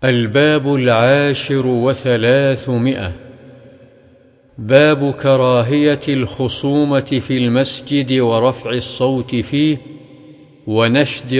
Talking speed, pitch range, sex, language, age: 65 wpm, 120-140 Hz, male, Arabic, 50-69